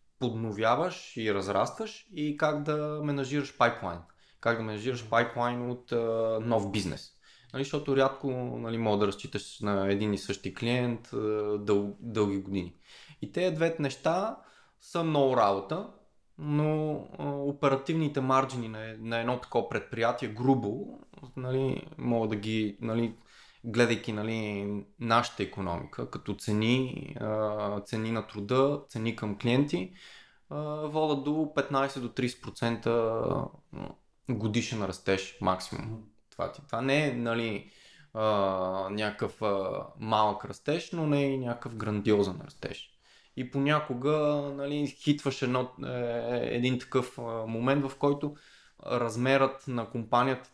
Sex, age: male, 20-39